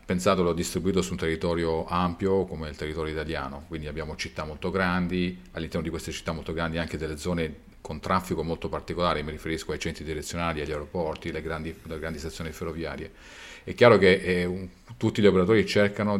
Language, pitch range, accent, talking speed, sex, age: Italian, 80-95 Hz, native, 180 wpm, male, 40-59